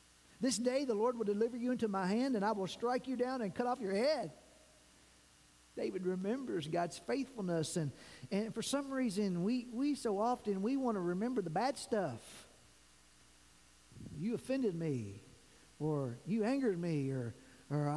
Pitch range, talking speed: 185-275 Hz, 165 wpm